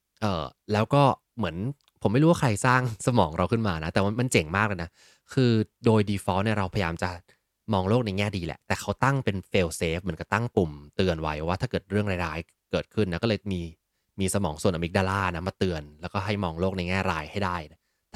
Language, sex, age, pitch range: Thai, male, 20-39, 90-115 Hz